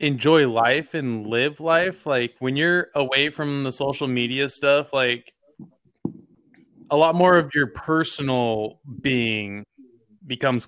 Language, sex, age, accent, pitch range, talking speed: English, male, 20-39, American, 125-150 Hz, 130 wpm